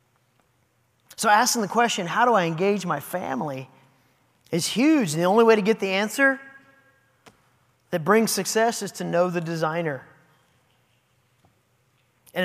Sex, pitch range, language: male, 170-240 Hz, English